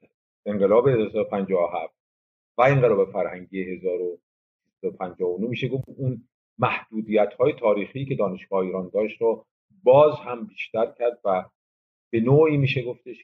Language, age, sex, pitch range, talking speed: Persian, 50-69, male, 95-140 Hz, 110 wpm